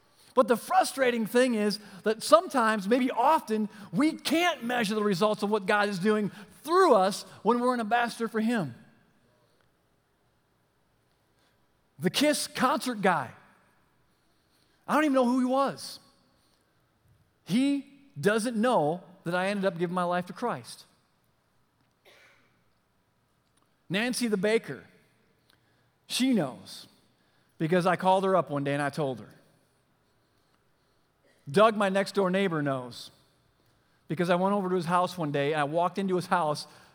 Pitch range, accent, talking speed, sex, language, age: 150-225 Hz, American, 140 wpm, male, English, 40-59